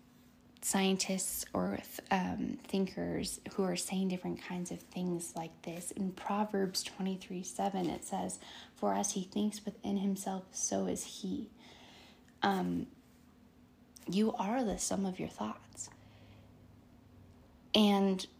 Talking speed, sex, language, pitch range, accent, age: 125 wpm, female, English, 180-210 Hz, American, 10-29